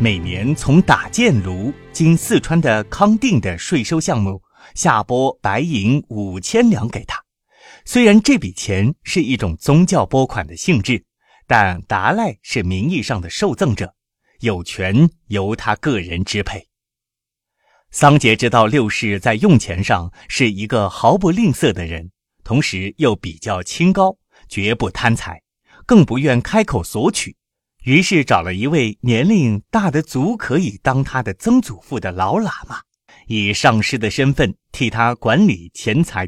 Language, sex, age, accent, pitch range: Chinese, male, 30-49, native, 100-150 Hz